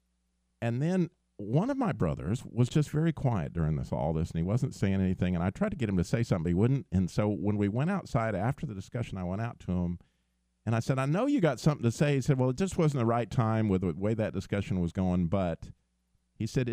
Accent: American